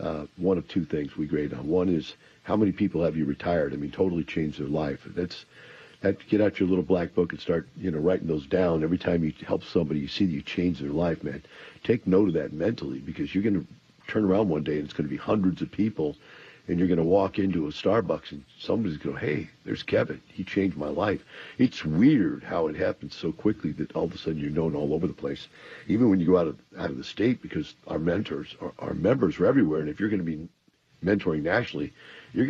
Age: 50-69